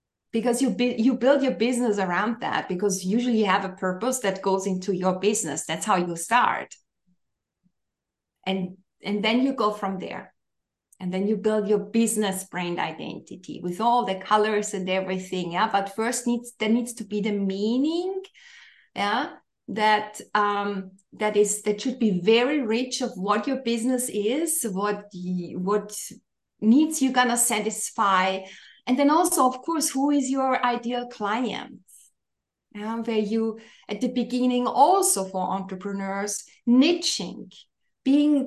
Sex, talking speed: female, 155 wpm